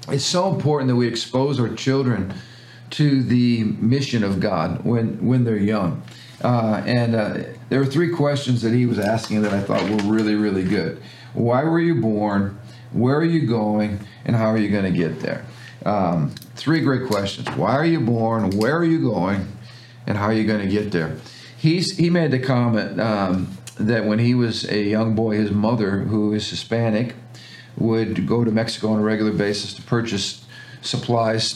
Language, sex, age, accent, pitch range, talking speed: English, male, 50-69, American, 105-125 Hz, 190 wpm